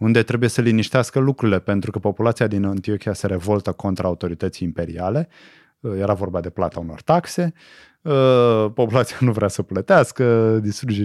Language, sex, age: Romanian, male, 30-49